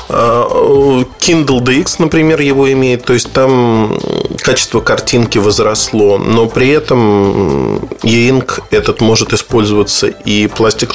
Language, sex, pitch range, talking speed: Russian, male, 105-145 Hz, 110 wpm